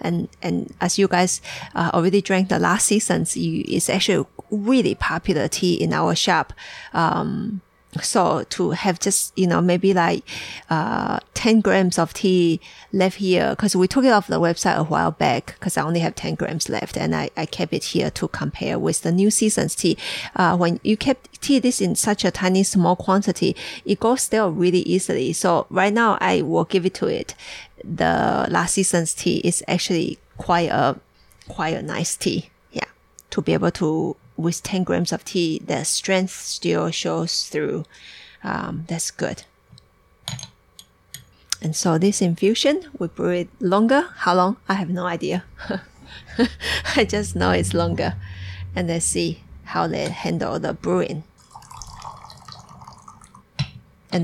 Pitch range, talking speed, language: 165-200 Hz, 165 wpm, English